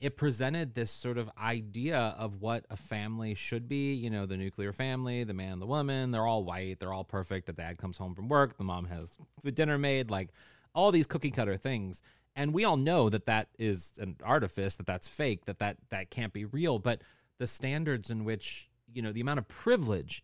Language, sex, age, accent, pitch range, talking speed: English, male, 30-49, American, 105-140 Hz, 220 wpm